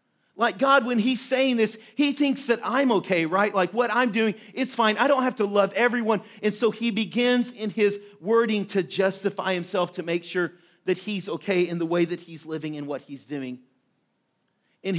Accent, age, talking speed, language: American, 40-59, 205 wpm, English